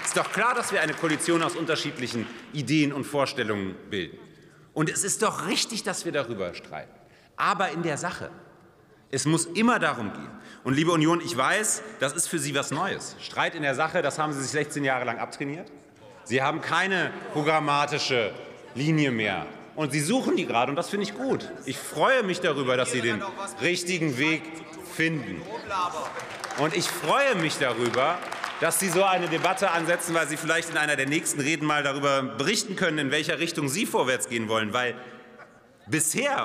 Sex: male